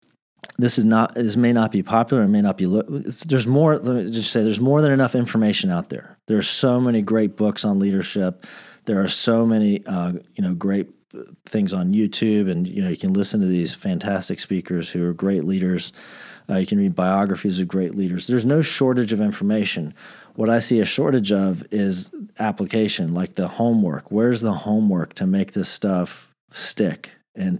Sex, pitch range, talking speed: male, 100-125 Hz, 200 wpm